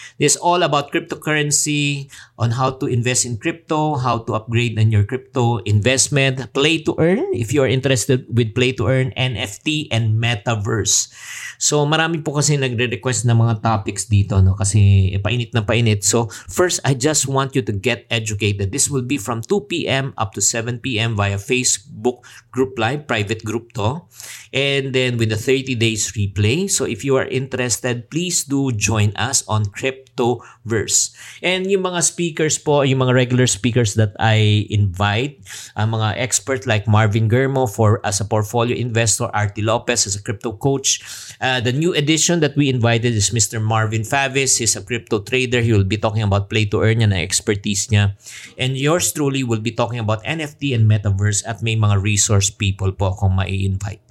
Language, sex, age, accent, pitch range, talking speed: English, male, 50-69, Filipino, 110-135 Hz, 180 wpm